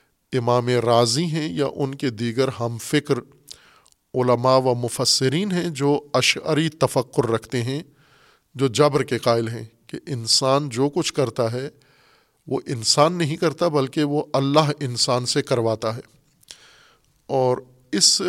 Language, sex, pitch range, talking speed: Urdu, male, 120-140 Hz, 140 wpm